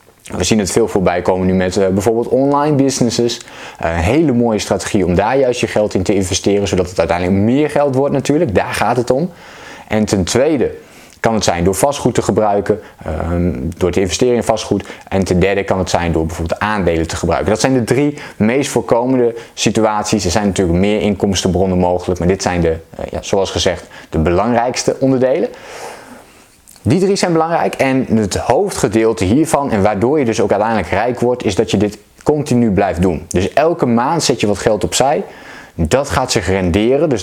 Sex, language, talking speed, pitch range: male, Dutch, 190 wpm, 90-120 Hz